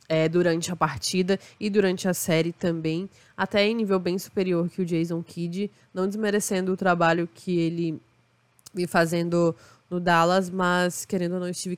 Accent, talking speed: Brazilian, 170 wpm